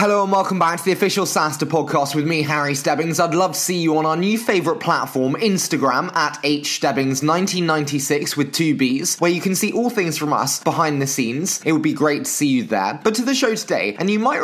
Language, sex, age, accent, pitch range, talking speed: English, male, 20-39, British, 140-185 Hz, 235 wpm